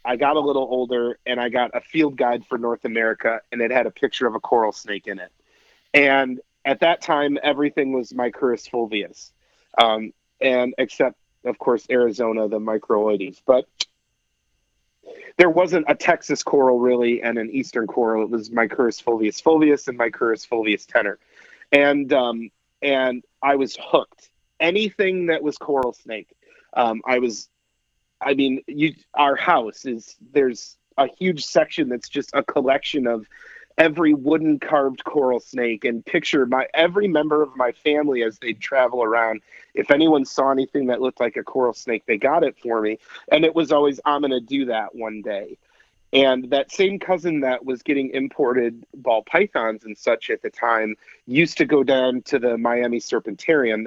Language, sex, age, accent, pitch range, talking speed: English, male, 30-49, American, 115-145 Hz, 175 wpm